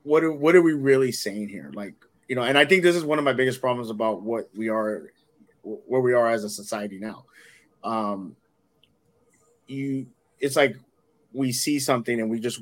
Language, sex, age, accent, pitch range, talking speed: English, male, 30-49, American, 100-120 Hz, 200 wpm